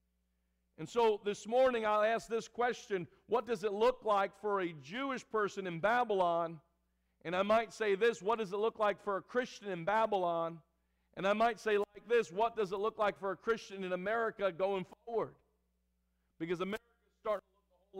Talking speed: 195 wpm